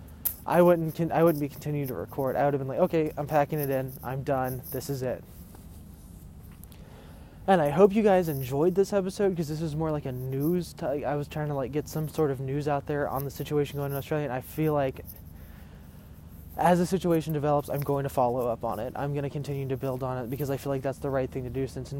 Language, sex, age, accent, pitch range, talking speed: English, male, 20-39, American, 125-155 Hz, 250 wpm